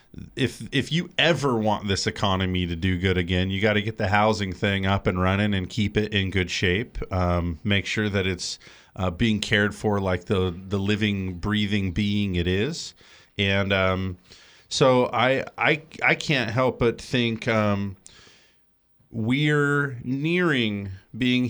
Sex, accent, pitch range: male, American, 100-130 Hz